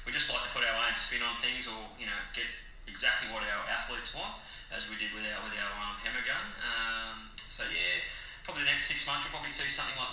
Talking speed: 255 wpm